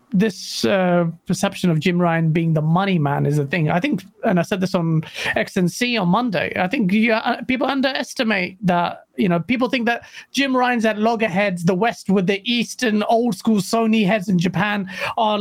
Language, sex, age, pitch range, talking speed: English, male, 30-49, 185-245 Hz, 210 wpm